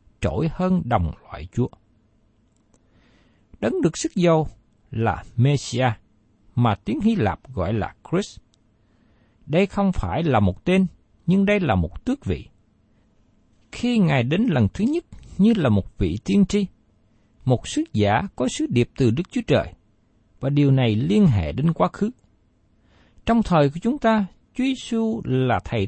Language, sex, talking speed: Vietnamese, male, 160 wpm